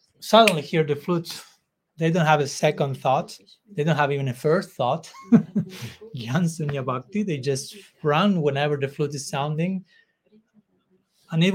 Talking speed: 140 wpm